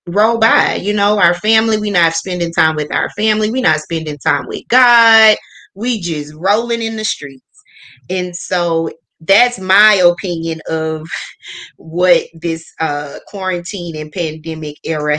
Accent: American